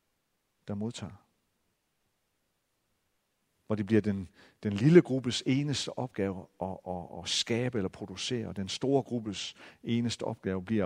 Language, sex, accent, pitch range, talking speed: Danish, male, native, 100-125 Hz, 135 wpm